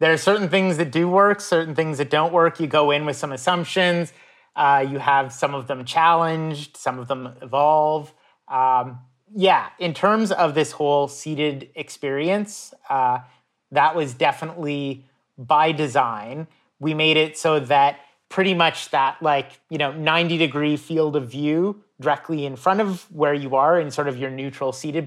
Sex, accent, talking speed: male, American, 170 wpm